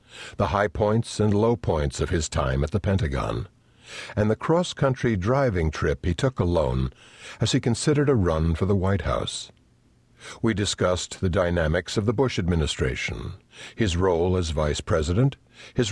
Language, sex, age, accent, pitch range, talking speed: English, male, 60-79, American, 85-120 Hz, 160 wpm